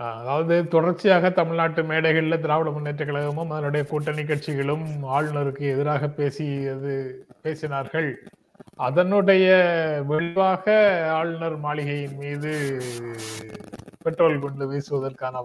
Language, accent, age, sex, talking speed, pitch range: Tamil, native, 30-49, male, 90 wpm, 140-180 Hz